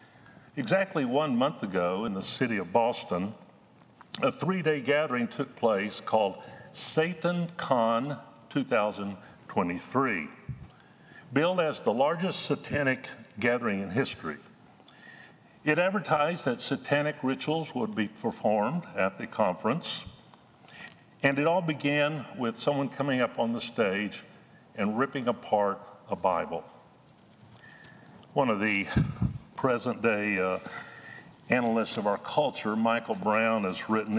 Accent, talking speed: American, 110 wpm